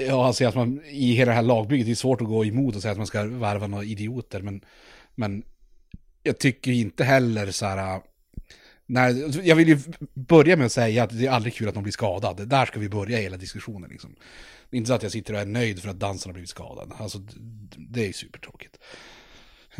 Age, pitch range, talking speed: 30-49, 100-125 Hz, 235 wpm